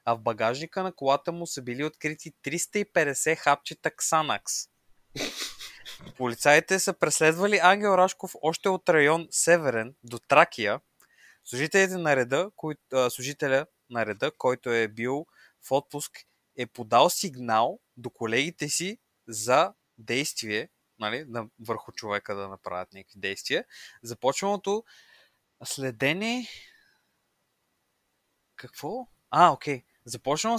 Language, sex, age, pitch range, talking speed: Bulgarian, male, 20-39, 120-170 Hz, 110 wpm